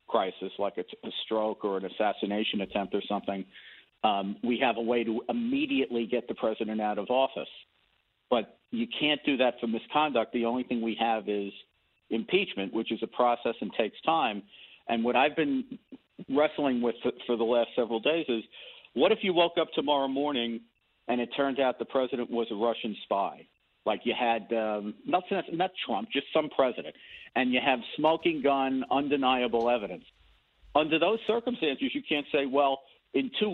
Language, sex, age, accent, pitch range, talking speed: English, male, 50-69, American, 115-165 Hz, 180 wpm